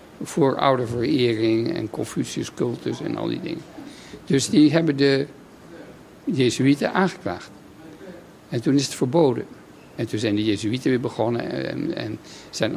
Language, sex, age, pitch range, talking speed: Dutch, male, 60-79, 115-150 Hz, 150 wpm